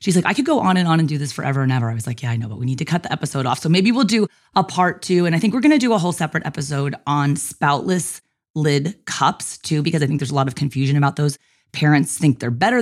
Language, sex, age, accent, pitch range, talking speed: English, female, 30-49, American, 135-185 Hz, 300 wpm